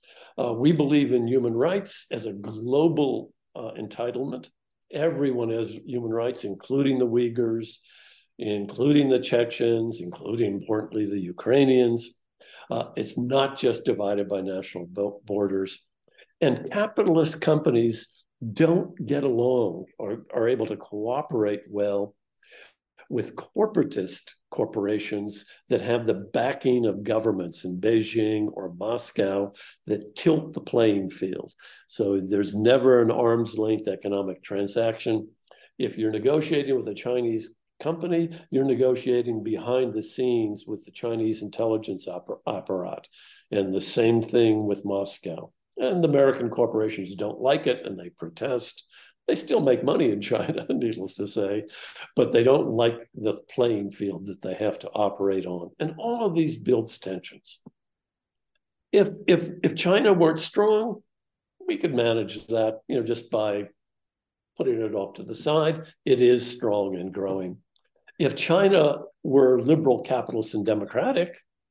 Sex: male